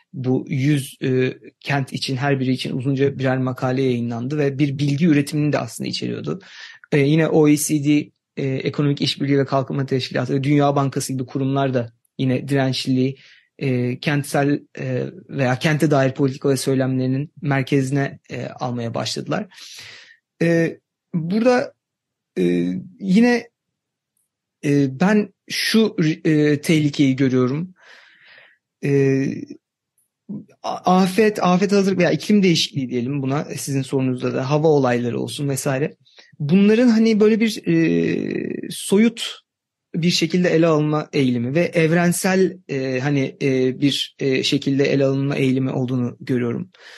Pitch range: 135-170 Hz